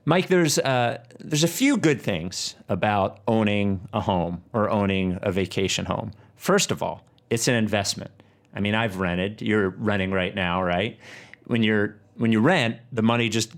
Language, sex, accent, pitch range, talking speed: English, male, American, 95-125 Hz, 175 wpm